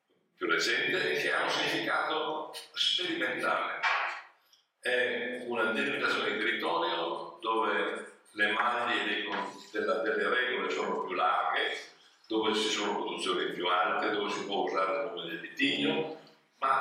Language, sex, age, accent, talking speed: English, male, 50-69, Italian, 140 wpm